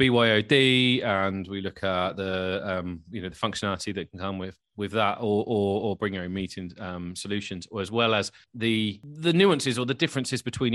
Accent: British